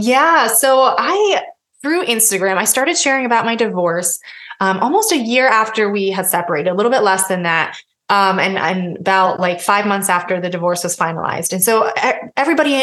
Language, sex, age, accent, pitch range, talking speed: English, female, 20-39, American, 185-230 Hz, 185 wpm